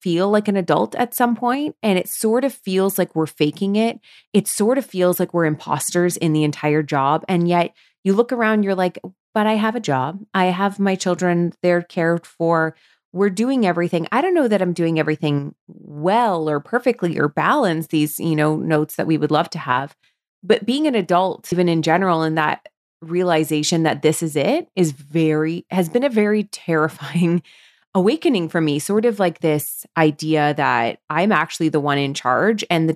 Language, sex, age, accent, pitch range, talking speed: English, female, 30-49, American, 155-195 Hz, 200 wpm